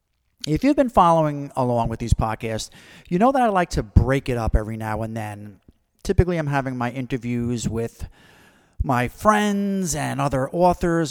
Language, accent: English, American